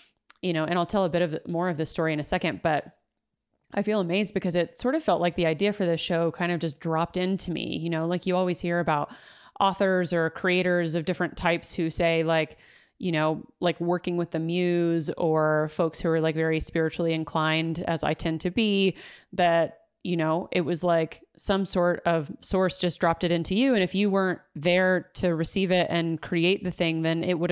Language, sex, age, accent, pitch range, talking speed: English, female, 30-49, American, 160-185 Hz, 220 wpm